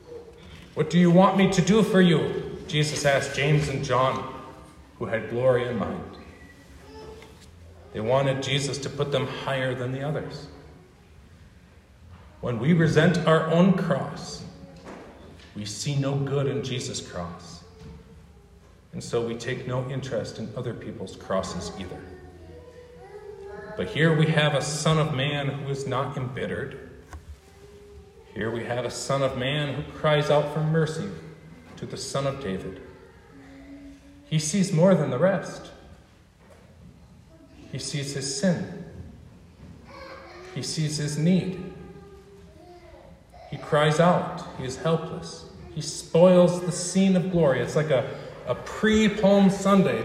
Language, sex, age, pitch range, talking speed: English, male, 40-59, 120-175 Hz, 135 wpm